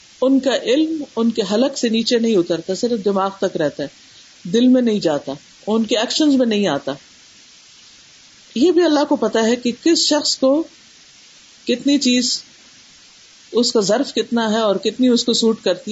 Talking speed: 180 wpm